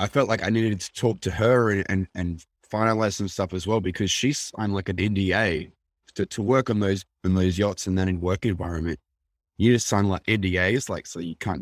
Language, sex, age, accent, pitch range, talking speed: English, male, 20-39, Australian, 85-105 Hz, 230 wpm